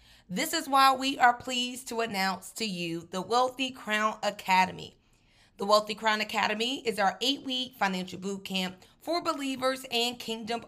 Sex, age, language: female, 30-49, English